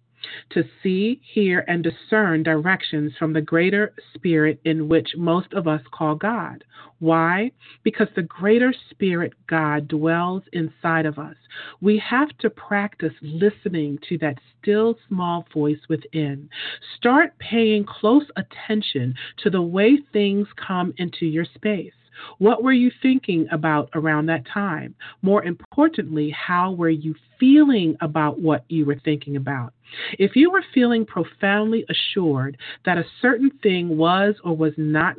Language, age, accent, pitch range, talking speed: English, 40-59, American, 155-210 Hz, 145 wpm